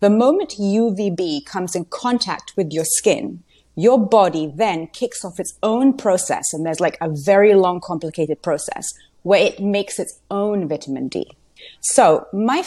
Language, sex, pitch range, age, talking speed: English, female, 175-235 Hz, 30-49, 160 wpm